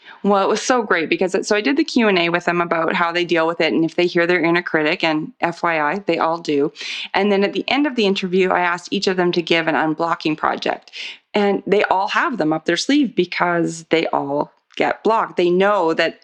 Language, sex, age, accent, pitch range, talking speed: English, female, 30-49, American, 170-205 Hz, 240 wpm